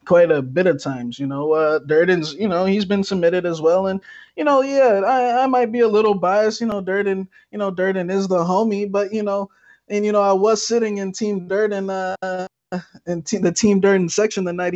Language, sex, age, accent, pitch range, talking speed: English, male, 20-39, American, 165-200 Hz, 230 wpm